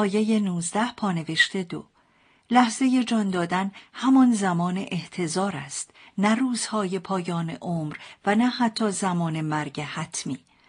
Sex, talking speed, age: female, 120 wpm, 50-69